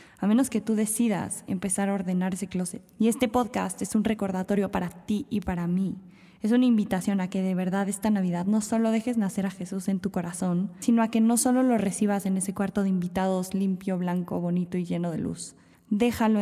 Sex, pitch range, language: female, 185-215 Hz, Spanish